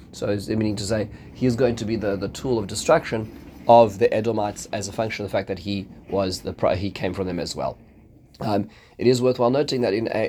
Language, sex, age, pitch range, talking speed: English, male, 30-49, 100-120 Hz, 245 wpm